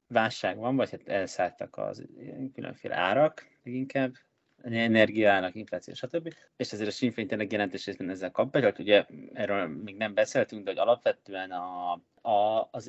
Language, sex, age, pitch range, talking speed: Hungarian, male, 20-39, 90-120 Hz, 150 wpm